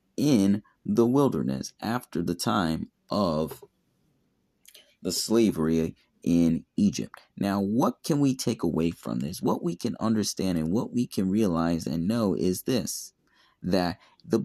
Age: 30-49